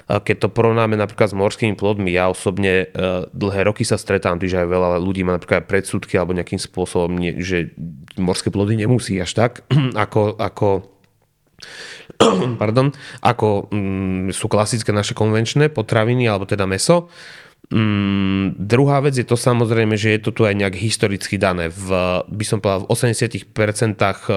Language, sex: Slovak, male